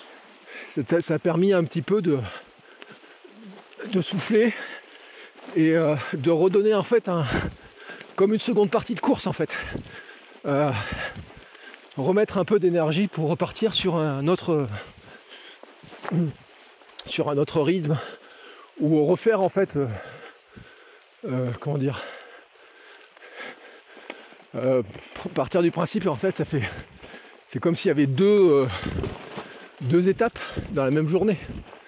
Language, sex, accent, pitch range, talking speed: French, male, French, 140-190 Hz, 130 wpm